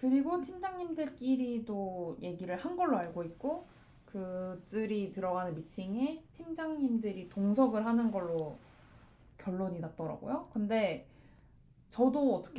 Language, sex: Korean, female